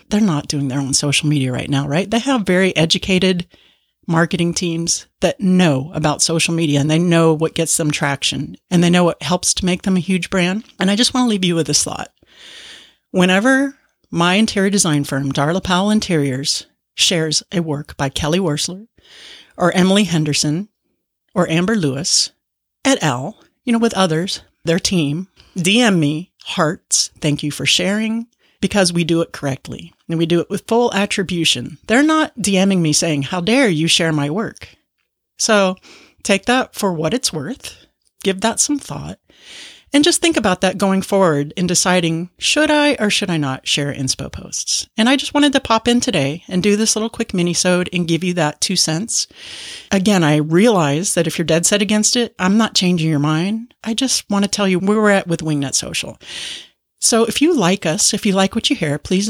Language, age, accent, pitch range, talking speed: English, 40-59, American, 160-220 Hz, 195 wpm